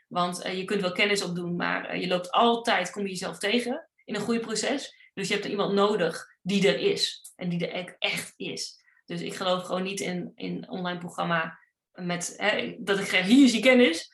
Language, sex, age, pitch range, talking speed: Dutch, female, 30-49, 185-225 Hz, 220 wpm